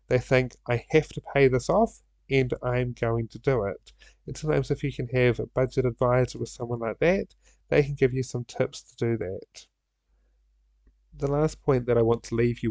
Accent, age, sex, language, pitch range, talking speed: British, 30-49, male, English, 115-145 Hz, 210 wpm